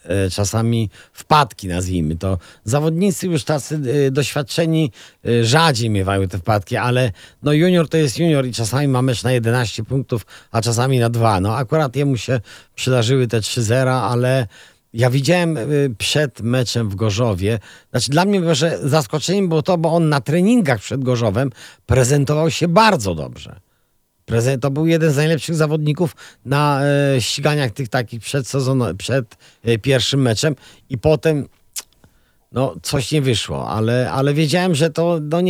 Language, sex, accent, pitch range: Polish, male, native, 105-145 Hz